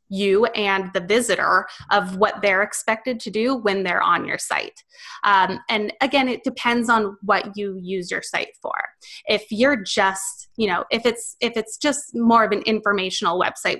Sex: female